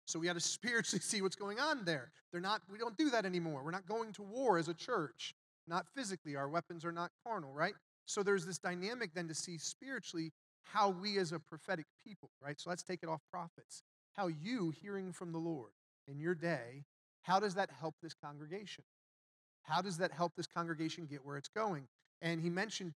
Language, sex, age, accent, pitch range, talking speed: English, male, 40-59, American, 150-195 Hz, 215 wpm